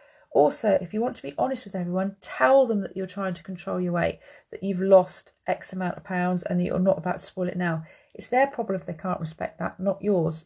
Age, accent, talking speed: 30-49, British, 250 wpm